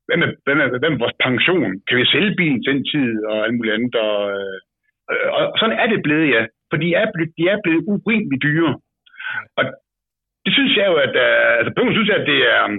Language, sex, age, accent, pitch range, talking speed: English, male, 60-79, Danish, 135-215 Hz, 230 wpm